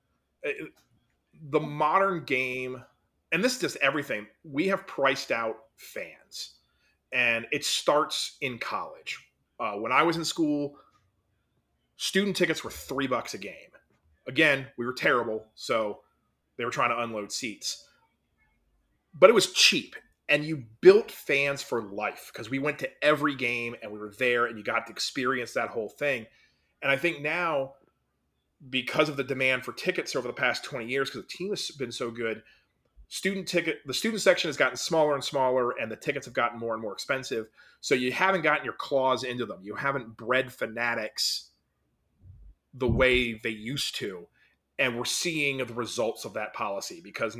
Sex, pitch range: male, 115-145 Hz